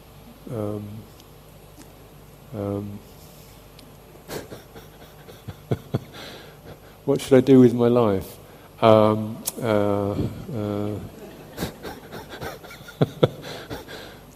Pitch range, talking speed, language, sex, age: 115-150 Hz, 45 wpm, English, male, 50-69